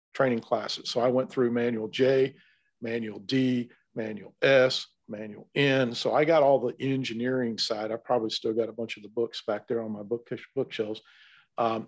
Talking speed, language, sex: 185 wpm, English, male